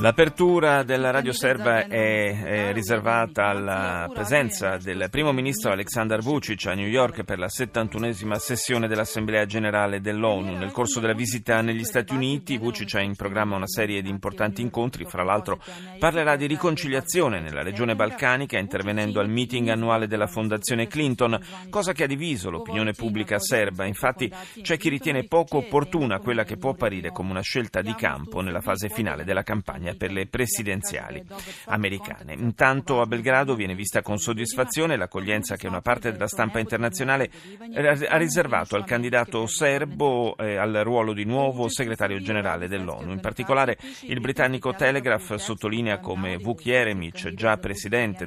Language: Italian